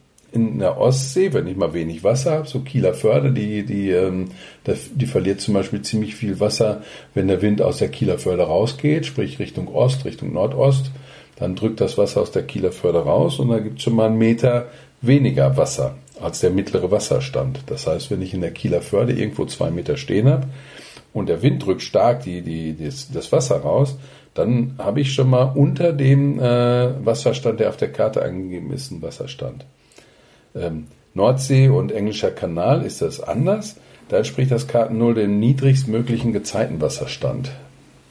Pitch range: 95-135 Hz